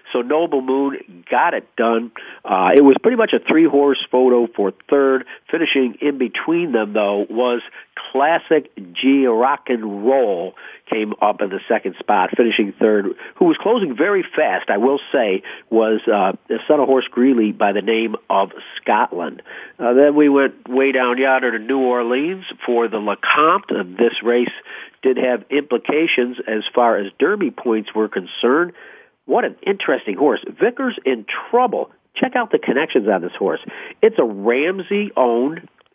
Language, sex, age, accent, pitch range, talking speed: English, male, 50-69, American, 120-155 Hz, 160 wpm